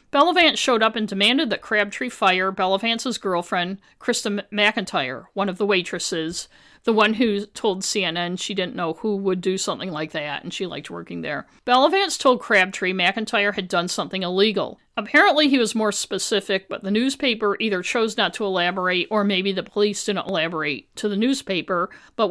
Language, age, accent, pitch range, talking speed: English, 50-69, American, 190-240 Hz, 180 wpm